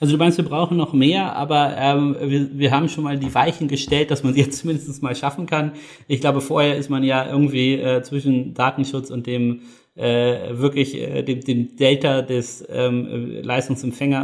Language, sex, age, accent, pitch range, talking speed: German, male, 30-49, German, 125-145 Hz, 185 wpm